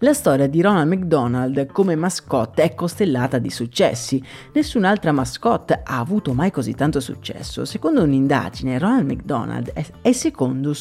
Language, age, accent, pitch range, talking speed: Italian, 40-59, native, 140-230 Hz, 140 wpm